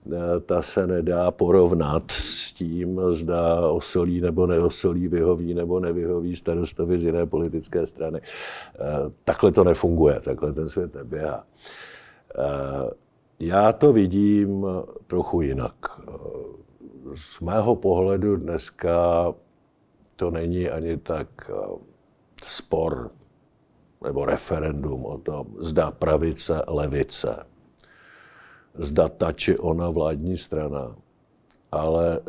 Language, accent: Czech, native